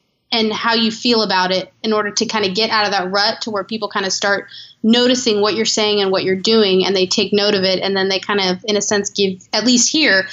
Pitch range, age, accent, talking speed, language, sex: 205-265 Hz, 20-39, American, 280 wpm, English, female